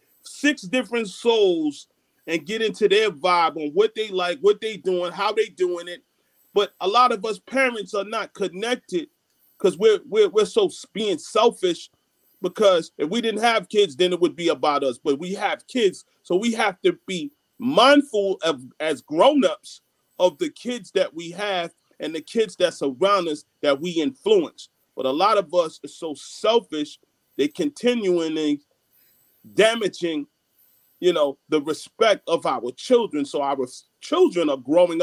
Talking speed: 170 wpm